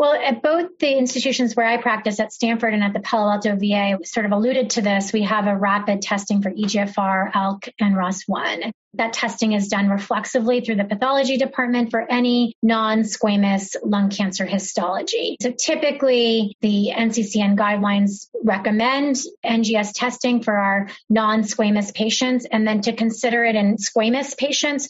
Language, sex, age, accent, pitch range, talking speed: English, female, 30-49, American, 205-240 Hz, 160 wpm